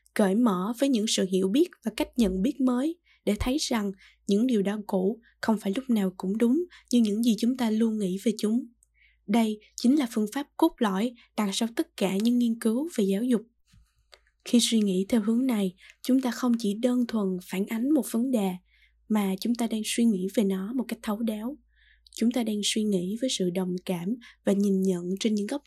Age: 10-29